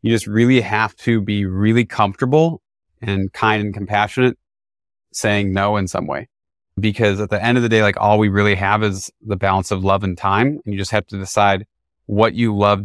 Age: 30-49